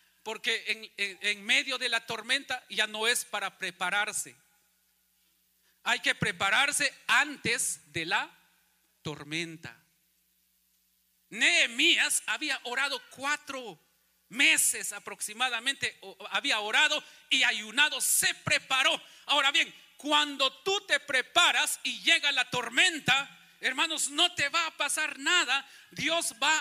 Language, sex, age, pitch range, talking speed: Spanish, male, 40-59, 240-300 Hz, 115 wpm